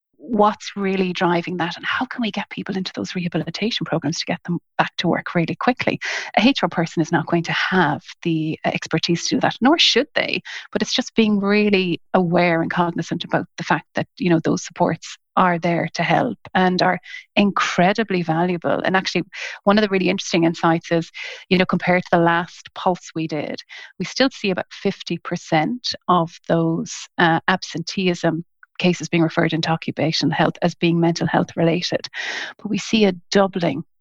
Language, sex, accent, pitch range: English, female, Irish, 165-195 Hz